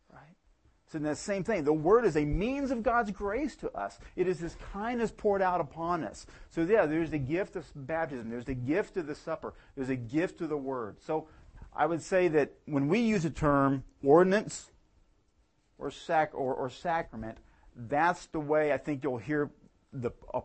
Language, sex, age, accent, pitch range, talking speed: English, male, 40-59, American, 130-185 Hz, 200 wpm